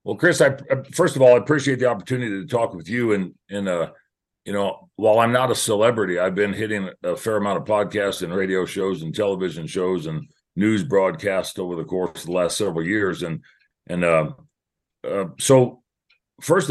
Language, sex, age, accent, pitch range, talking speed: English, male, 40-59, American, 95-125 Hz, 205 wpm